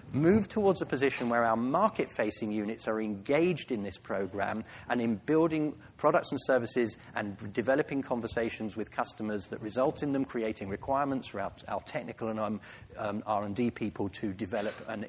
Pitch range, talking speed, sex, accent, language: 110-140 Hz, 160 wpm, male, British, English